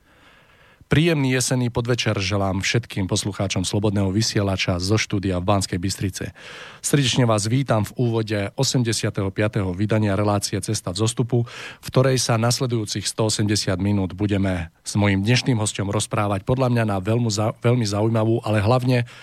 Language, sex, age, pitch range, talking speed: Slovak, male, 40-59, 100-120 Hz, 135 wpm